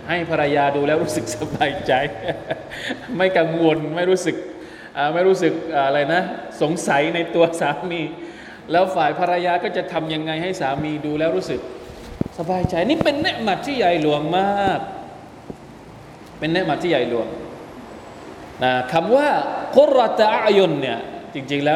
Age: 20-39